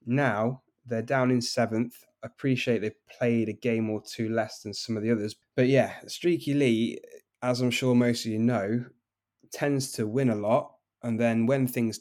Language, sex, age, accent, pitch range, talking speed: English, male, 10-29, British, 110-125 Hz, 195 wpm